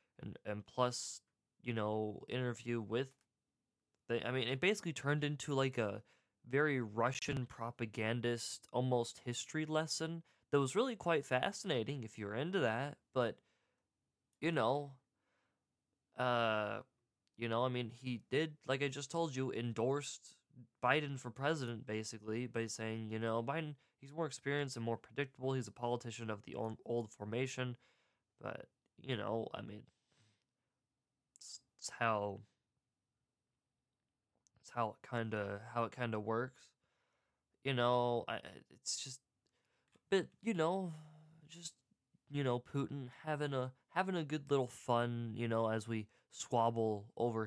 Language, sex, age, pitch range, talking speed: English, male, 20-39, 115-145 Hz, 140 wpm